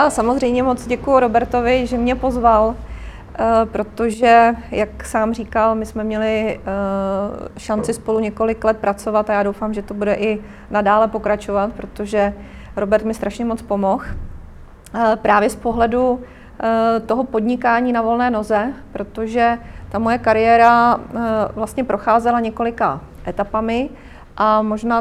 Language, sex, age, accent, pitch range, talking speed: Czech, female, 30-49, native, 215-235 Hz, 125 wpm